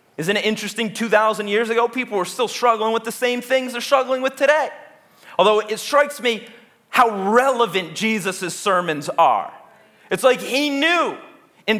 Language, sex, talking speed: English, male, 165 wpm